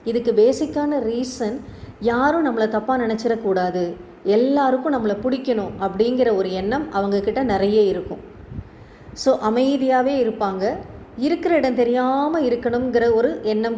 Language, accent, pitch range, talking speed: Tamil, native, 215-265 Hz, 110 wpm